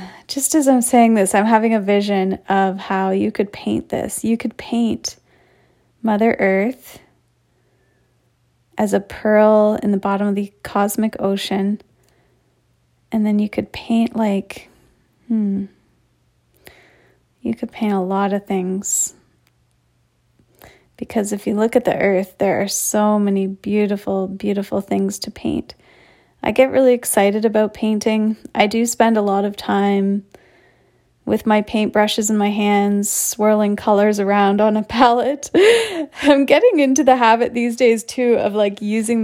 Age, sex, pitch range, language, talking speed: 30-49, female, 200-230 Hz, English, 145 wpm